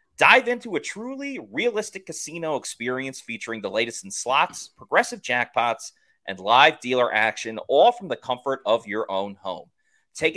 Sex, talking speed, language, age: male, 155 wpm, English, 30-49